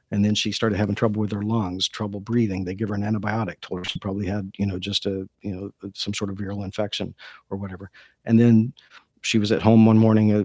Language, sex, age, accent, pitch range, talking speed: English, male, 50-69, American, 105-120 Hz, 245 wpm